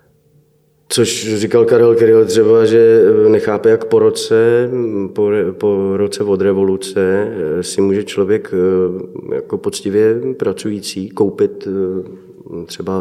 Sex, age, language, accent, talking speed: male, 30-49, Czech, native, 105 wpm